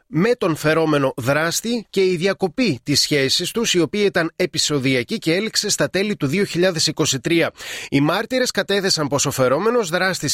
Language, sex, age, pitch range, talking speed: Greek, male, 30-49, 145-180 Hz, 155 wpm